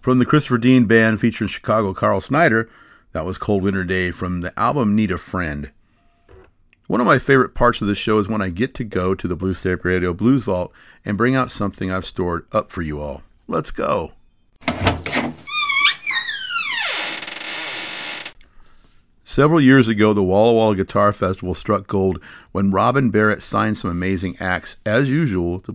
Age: 50-69